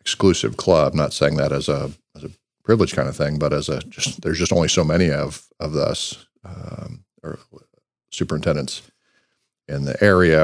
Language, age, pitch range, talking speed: English, 50-69, 80-90 Hz, 180 wpm